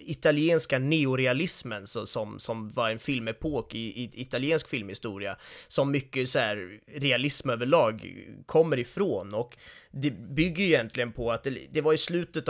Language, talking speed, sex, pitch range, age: Swedish, 150 wpm, male, 120-145 Hz, 30-49